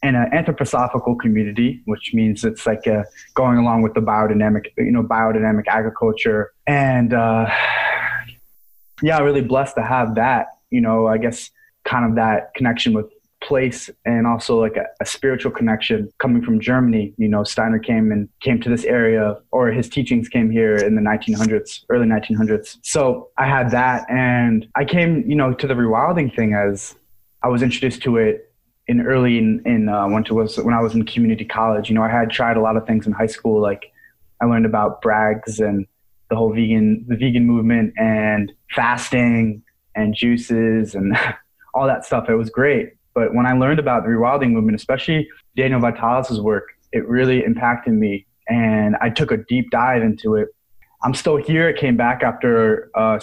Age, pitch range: 20-39, 110-125 Hz